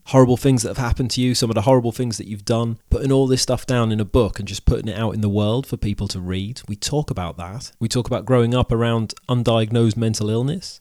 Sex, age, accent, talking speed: male, 30-49, British, 265 wpm